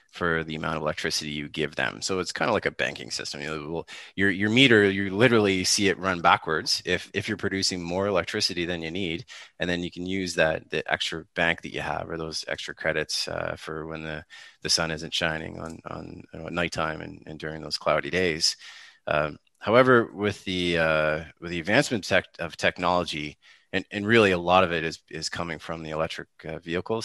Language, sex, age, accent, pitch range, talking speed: English, male, 30-49, American, 80-100 Hz, 215 wpm